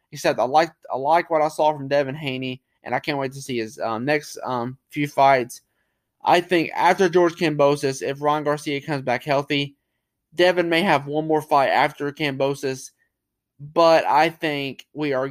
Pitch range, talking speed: 125-150 Hz, 185 wpm